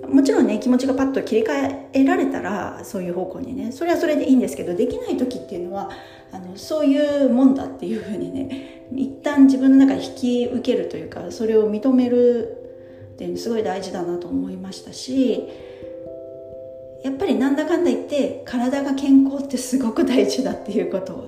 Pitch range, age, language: 175-275 Hz, 40-59, Japanese